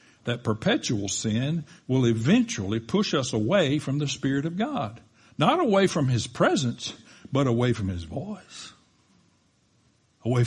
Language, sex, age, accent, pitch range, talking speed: English, male, 60-79, American, 130-200 Hz, 140 wpm